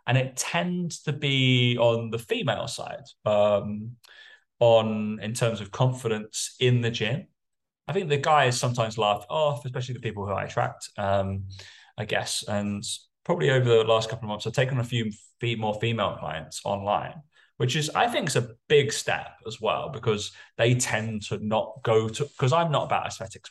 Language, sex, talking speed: English, male, 185 wpm